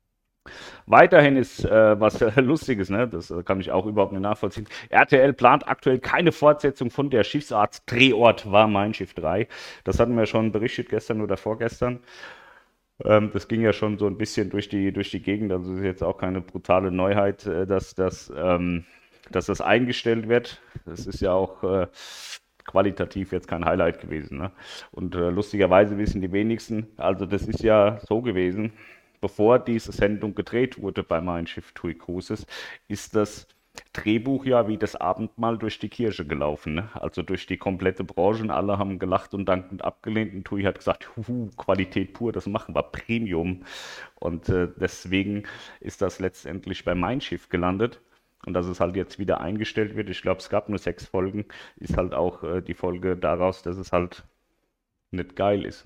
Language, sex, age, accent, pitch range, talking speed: German, male, 40-59, German, 90-110 Hz, 185 wpm